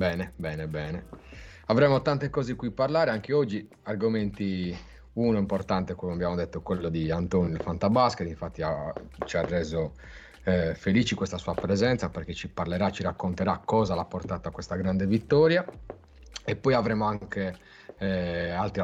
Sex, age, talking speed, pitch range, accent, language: male, 30-49, 160 wpm, 85-110 Hz, native, Italian